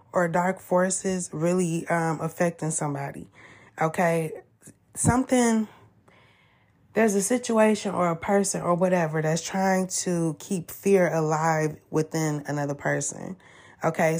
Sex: female